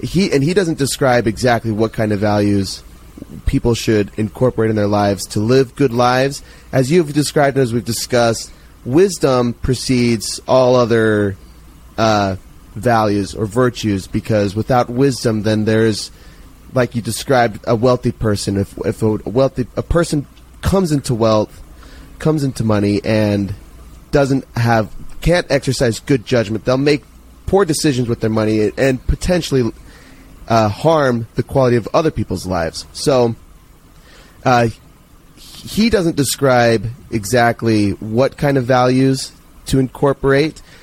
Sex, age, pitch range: male, 30-49, 105-135 Hz